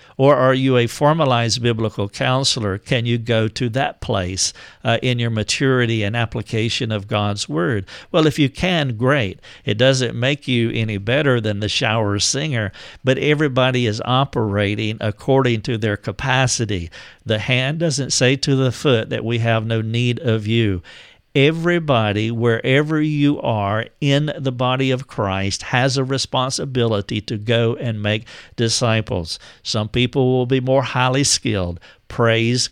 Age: 50-69